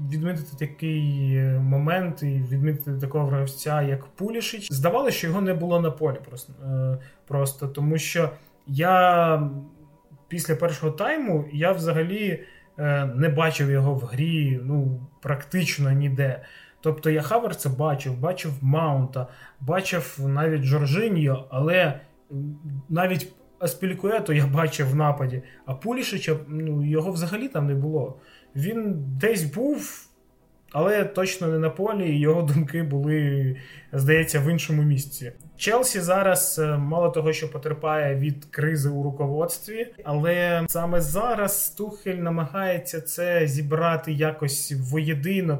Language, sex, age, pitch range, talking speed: Ukrainian, male, 20-39, 145-170 Hz, 125 wpm